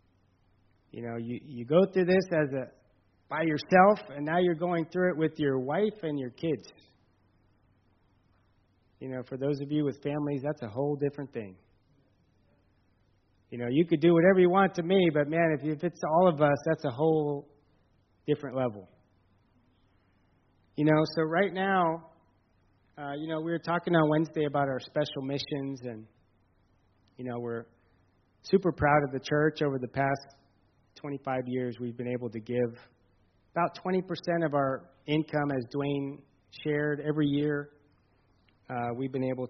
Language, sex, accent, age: English, male, American, 30-49